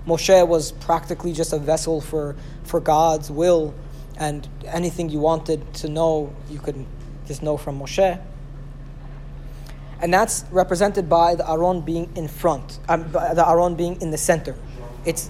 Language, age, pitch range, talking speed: English, 20-39, 145-180 Hz, 155 wpm